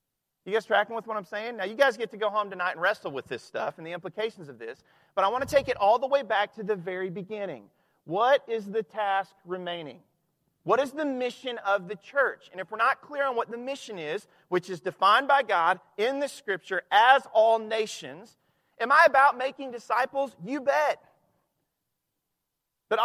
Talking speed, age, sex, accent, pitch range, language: 210 wpm, 40-59, male, American, 175-230 Hz, English